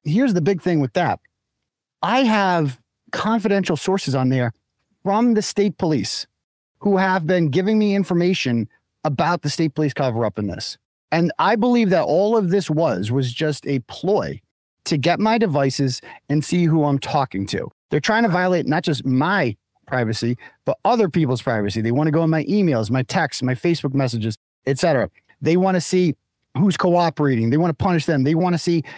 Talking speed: 190 wpm